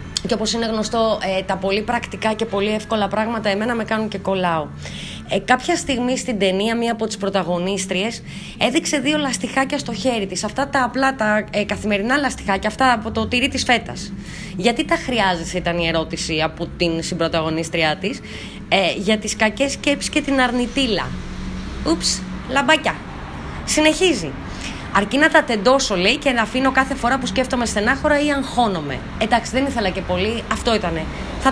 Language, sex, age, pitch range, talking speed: Greek, female, 20-39, 195-260 Hz, 160 wpm